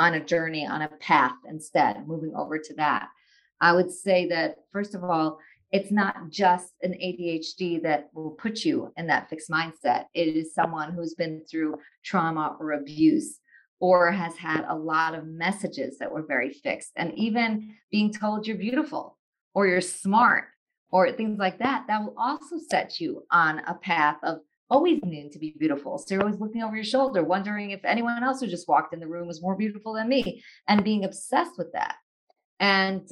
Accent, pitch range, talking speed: American, 170-220 Hz, 190 wpm